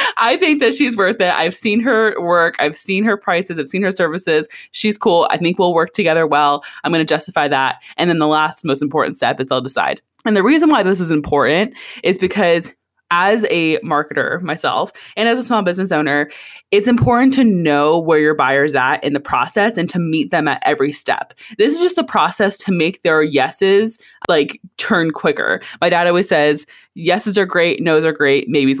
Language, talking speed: English, 210 wpm